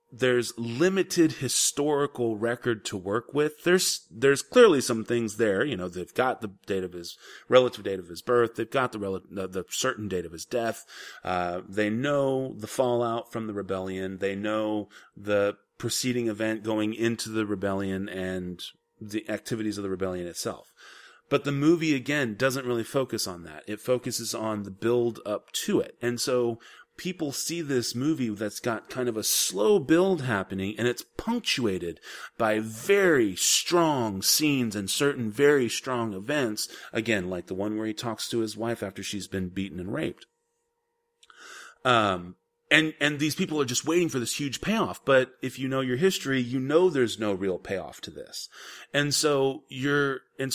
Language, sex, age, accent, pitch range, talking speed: English, male, 30-49, American, 105-145 Hz, 175 wpm